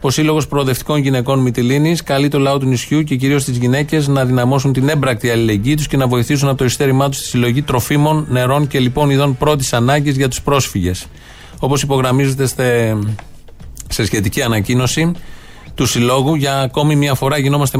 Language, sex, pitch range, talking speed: Greek, male, 120-145 Hz, 170 wpm